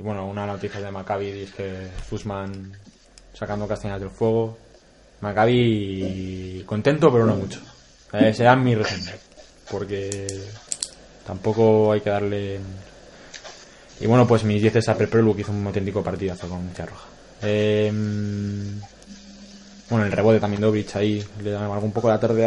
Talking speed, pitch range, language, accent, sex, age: 150 wpm, 100-120 Hz, Spanish, Spanish, male, 20-39